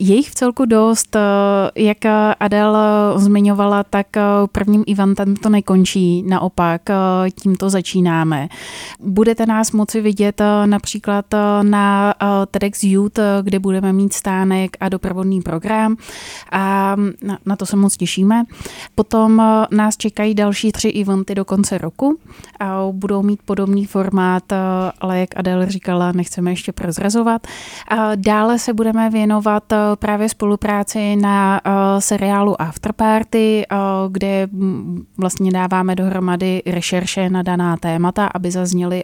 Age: 20-39